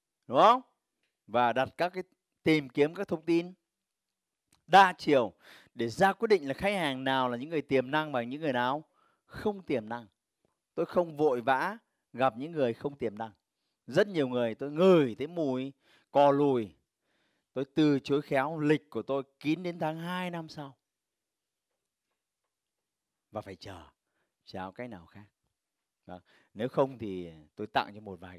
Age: 30-49